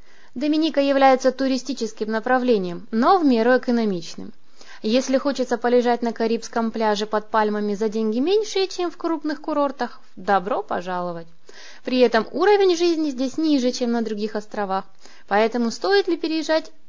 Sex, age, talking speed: female, 20-39, 140 wpm